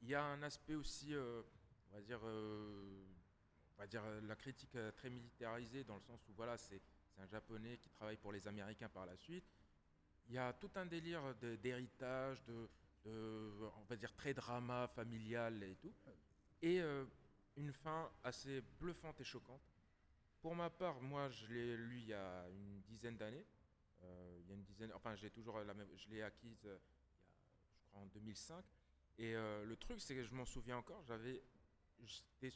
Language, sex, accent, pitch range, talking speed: French, male, French, 100-130 Hz, 200 wpm